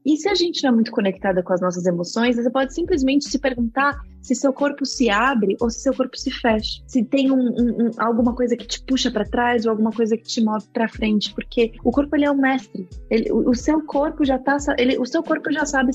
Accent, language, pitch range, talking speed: Brazilian, Portuguese, 210-265 Hz, 260 wpm